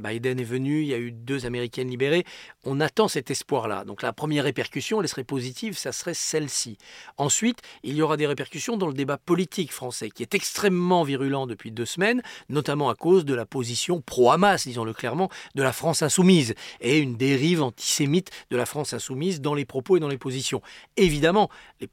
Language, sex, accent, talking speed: French, male, French, 195 wpm